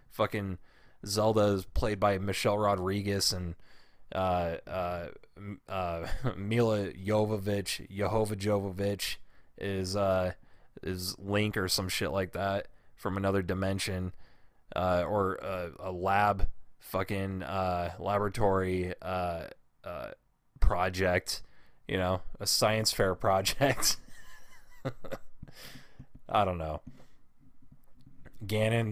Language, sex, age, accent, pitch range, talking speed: English, male, 20-39, American, 90-105 Hz, 100 wpm